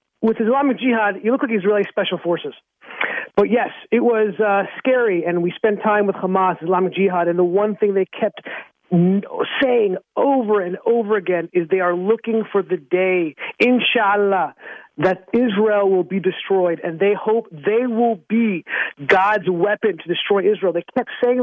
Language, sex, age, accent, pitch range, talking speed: English, male, 40-59, American, 200-255 Hz, 175 wpm